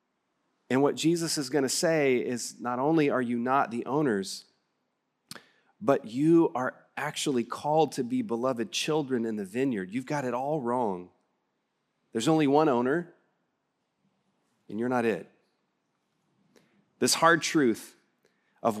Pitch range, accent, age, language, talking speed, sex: 115-160 Hz, American, 30-49, English, 140 wpm, male